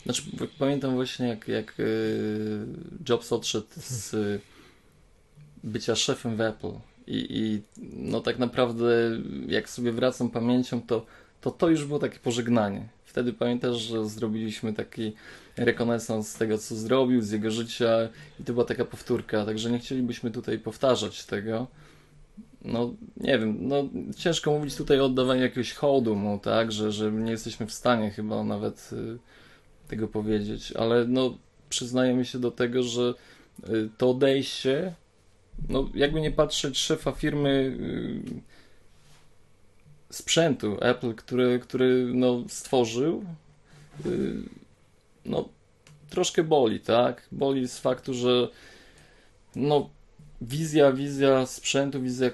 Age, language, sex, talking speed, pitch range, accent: 20-39, Polish, male, 130 wpm, 110-135 Hz, native